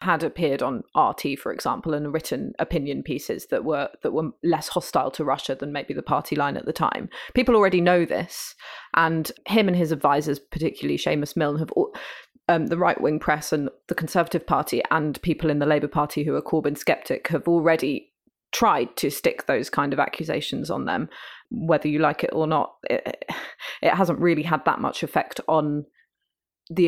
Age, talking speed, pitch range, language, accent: 20-39, 190 wpm, 150-175 Hz, English, British